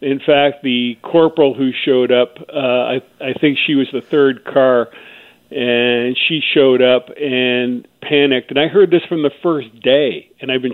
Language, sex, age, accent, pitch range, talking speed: English, male, 50-69, American, 125-145 Hz, 185 wpm